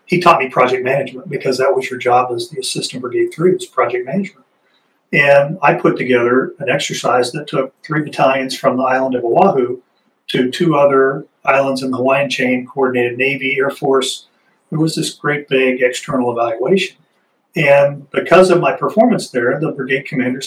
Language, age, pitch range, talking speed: English, 40-59, 125-160 Hz, 180 wpm